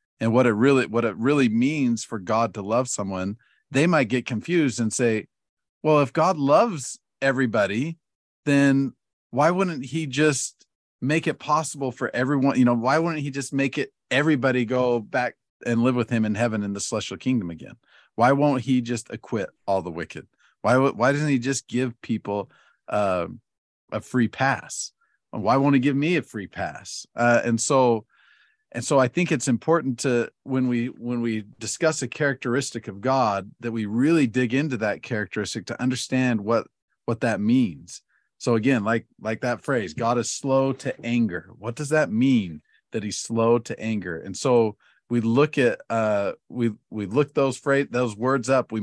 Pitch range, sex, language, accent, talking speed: 115-135 Hz, male, English, American, 185 wpm